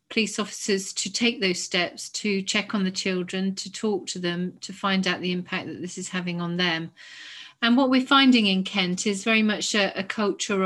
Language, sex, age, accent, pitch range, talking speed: English, female, 40-59, British, 185-220 Hz, 215 wpm